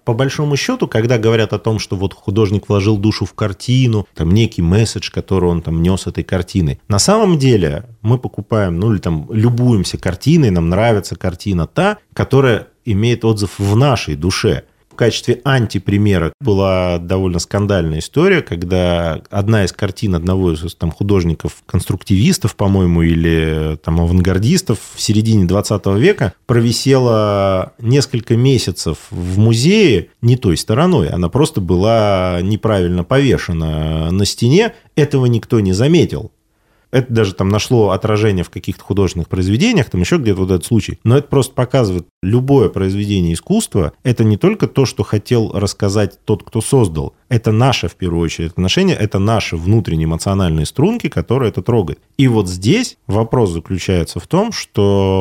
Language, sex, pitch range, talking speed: Russian, male, 90-120 Hz, 150 wpm